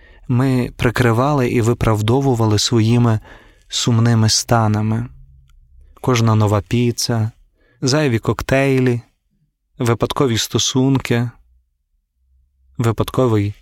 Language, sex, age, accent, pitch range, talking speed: Ukrainian, male, 20-39, native, 100-125 Hz, 65 wpm